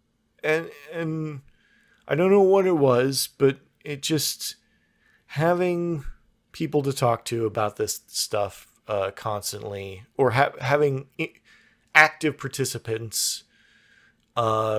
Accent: American